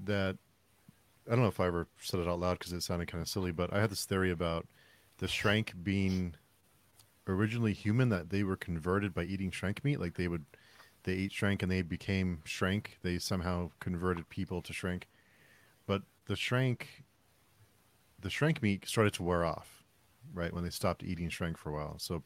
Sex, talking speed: male, 195 wpm